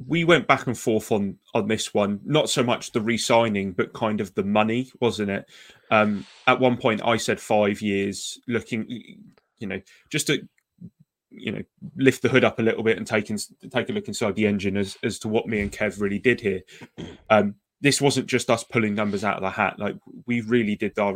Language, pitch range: English, 105-120 Hz